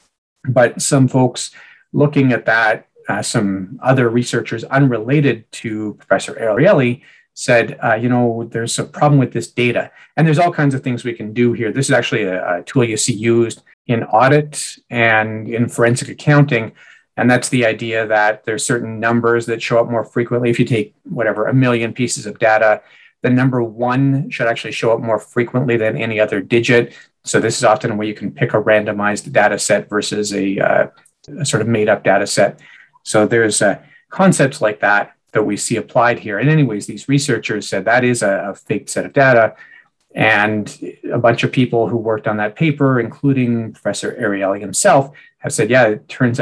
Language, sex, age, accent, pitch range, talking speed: English, male, 40-59, American, 110-130 Hz, 190 wpm